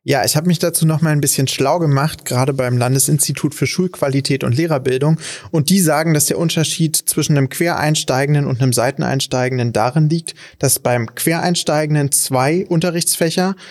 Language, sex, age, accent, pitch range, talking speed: German, male, 30-49, German, 130-160 Hz, 160 wpm